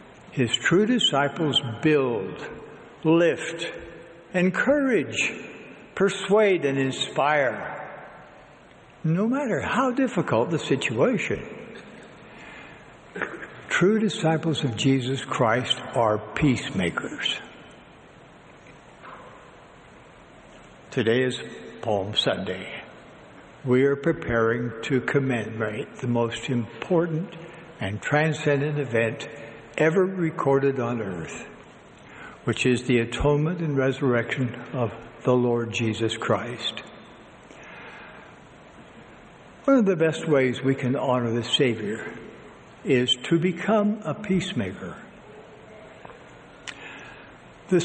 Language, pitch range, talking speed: English, 125-170 Hz, 85 wpm